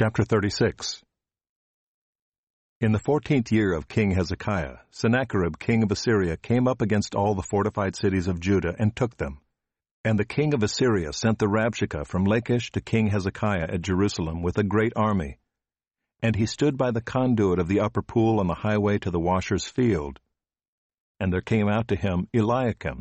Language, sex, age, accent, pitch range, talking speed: English, male, 50-69, American, 95-120 Hz, 175 wpm